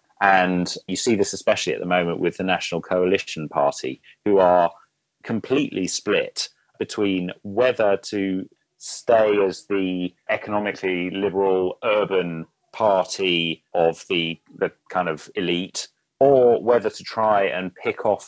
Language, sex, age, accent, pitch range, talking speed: Finnish, male, 30-49, British, 85-105 Hz, 130 wpm